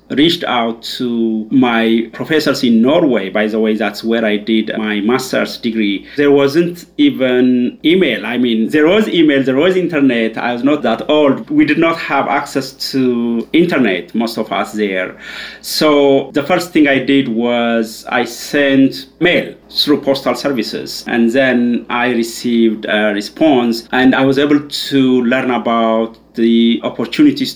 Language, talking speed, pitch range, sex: English, 160 wpm, 115-145 Hz, male